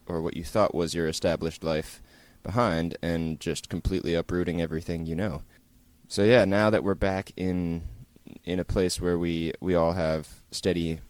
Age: 20-39